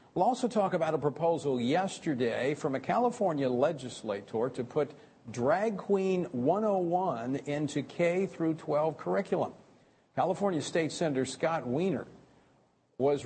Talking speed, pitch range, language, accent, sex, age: 120 wpm, 125-175 Hz, English, American, male, 50-69